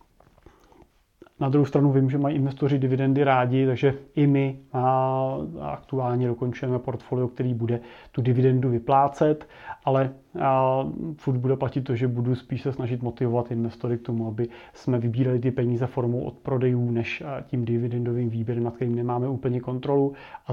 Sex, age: male, 30-49